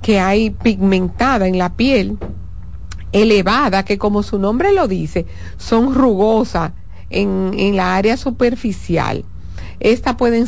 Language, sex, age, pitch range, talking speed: Spanish, female, 50-69, 185-245 Hz, 125 wpm